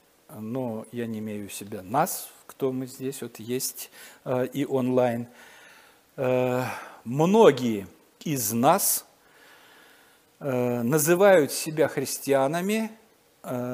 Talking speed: 95 wpm